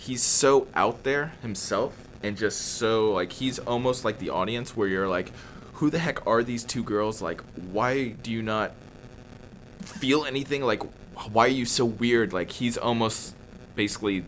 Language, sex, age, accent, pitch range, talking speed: English, male, 20-39, American, 90-120 Hz, 170 wpm